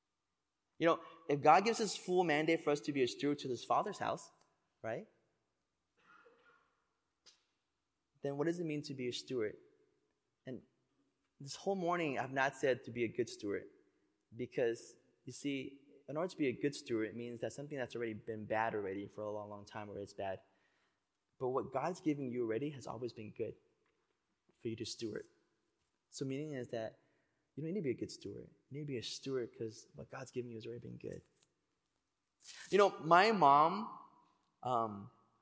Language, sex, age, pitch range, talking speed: English, male, 20-39, 110-145 Hz, 195 wpm